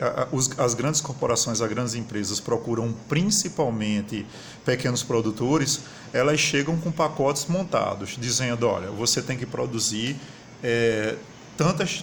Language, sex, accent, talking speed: Portuguese, male, Brazilian, 110 wpm